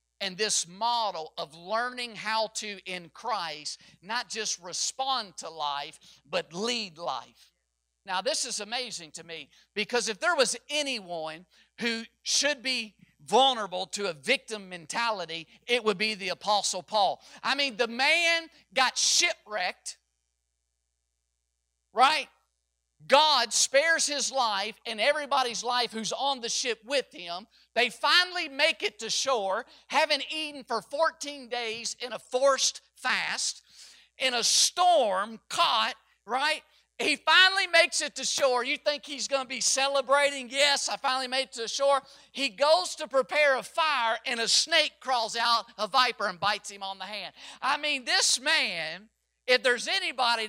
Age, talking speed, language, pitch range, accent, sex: 50-69, 155 wpm, English, 195-280 Hz, American, male